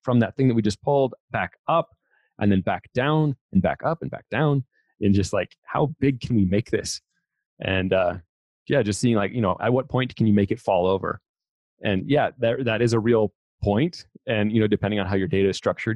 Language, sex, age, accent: English, male, 30-49, American